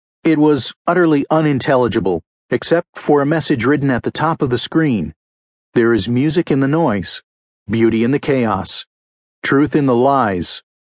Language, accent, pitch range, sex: English, American, 105-150 Hz, male